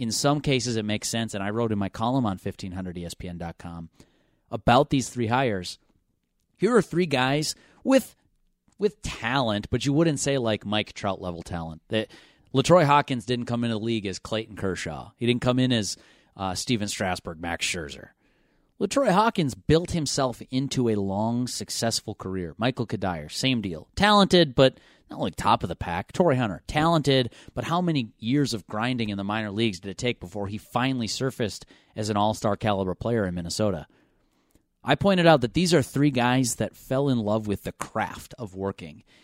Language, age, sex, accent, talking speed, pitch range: English, 30-49, male, American, 185 wpm, 100-135 Hz